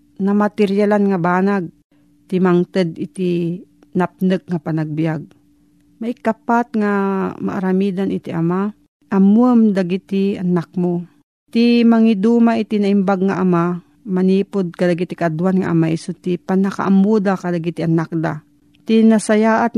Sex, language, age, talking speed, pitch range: female, Filipino, 40-59, 125 wpm, 175-220 Hz